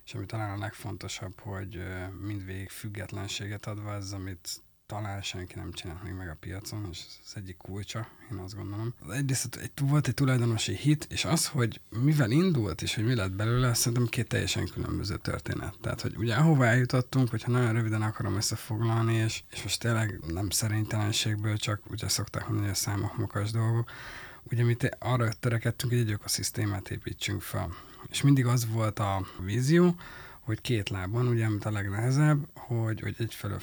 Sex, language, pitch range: male, Hungarian, 100-125 Hz